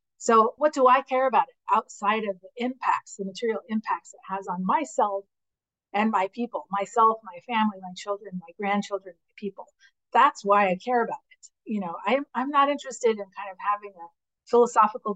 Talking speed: 190 wpm